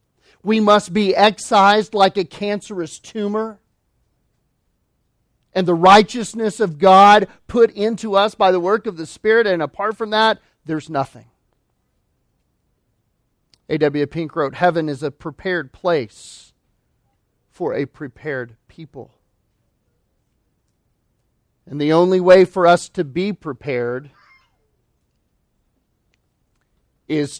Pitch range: 140-190 Hz